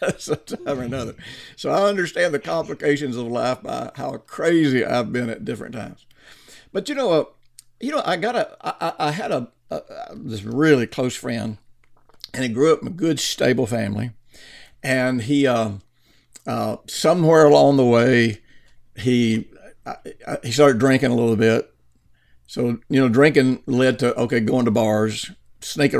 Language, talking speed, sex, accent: English, 170 wpm, male, American